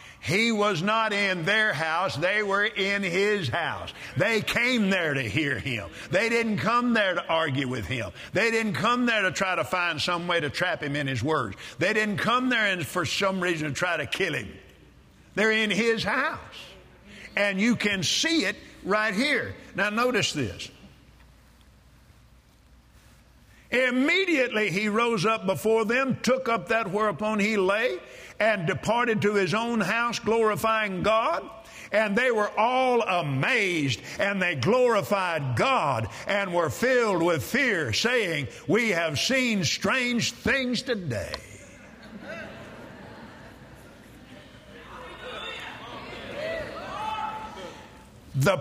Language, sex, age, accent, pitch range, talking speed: English, male, 50-69, American, 175-225 Hz, 135 wpm